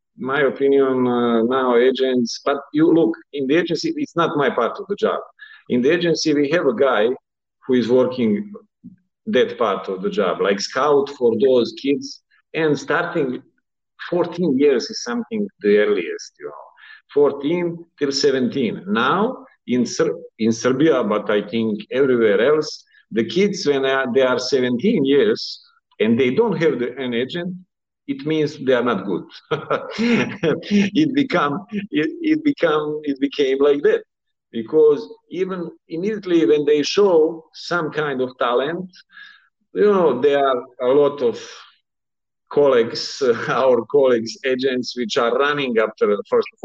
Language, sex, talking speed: Romanian, male, 155 wpm